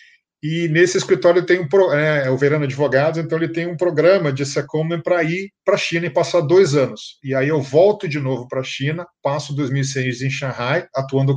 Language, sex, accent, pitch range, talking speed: Portuguese, male, Brazilian, 135-175 Hz, 195 wpm